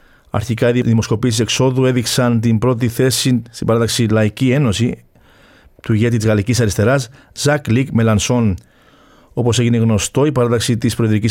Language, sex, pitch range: Greek, male, 110-140 Hz